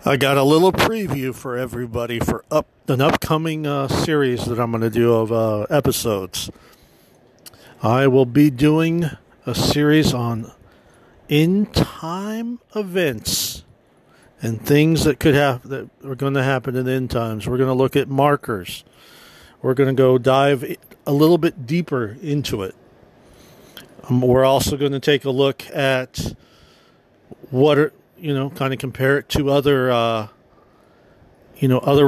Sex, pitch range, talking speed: male, 120-145 Hz, 155 wpm